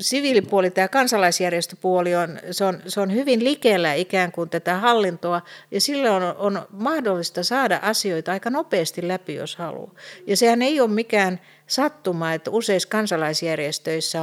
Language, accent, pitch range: English, Finnish, 170-215 Hz